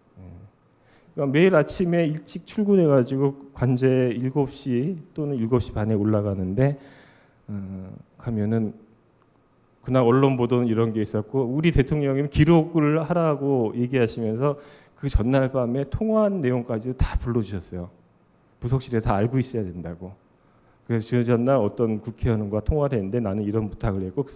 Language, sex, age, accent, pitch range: Korean, male, 40-59, native, 105-140 Hz